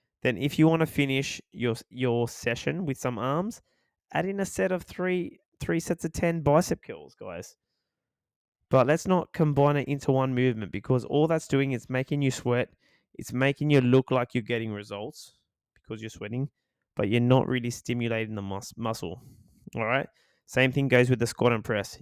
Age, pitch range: 20-39, 115-145 Hz